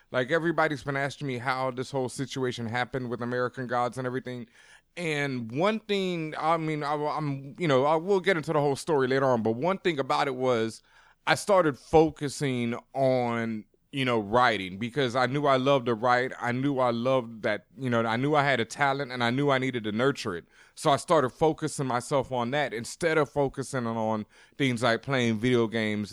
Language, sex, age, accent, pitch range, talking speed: English, male, 20-39, American, 125-155 Hz, 205 wpm